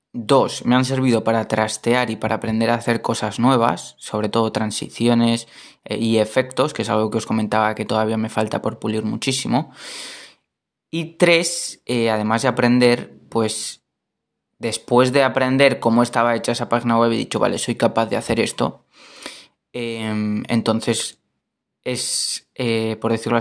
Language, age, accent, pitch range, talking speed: Spanish, 20-39, Spanish, 110-125 Hz, 155 wpm